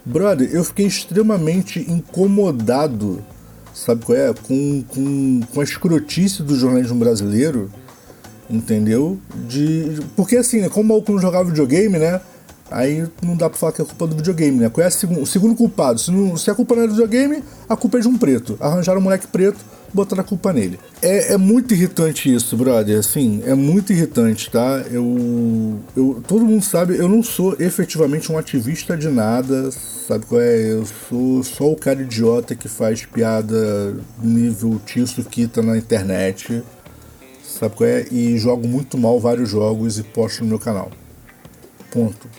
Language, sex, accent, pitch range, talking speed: Portuguese, male, Brazilian, 115-175 Hz, 175 wpm